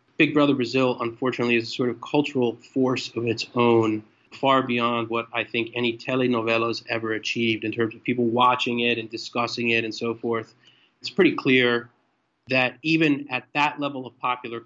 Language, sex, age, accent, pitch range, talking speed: English, male, 30-49, American, 115-130 Hz, 180 wpm